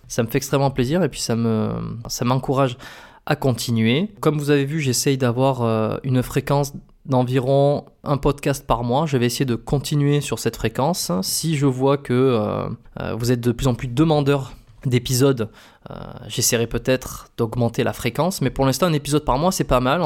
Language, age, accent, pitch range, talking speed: French, 20-39, French, 120-140 Hz, 185 wpm